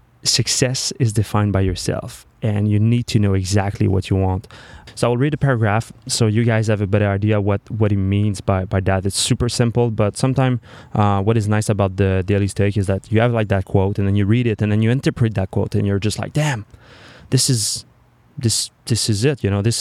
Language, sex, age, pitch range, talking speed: English, male, 20-39, 100-115 Hz, 235 wpm